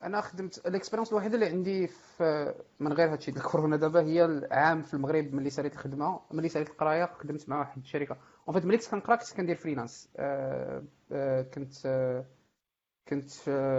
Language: Arabic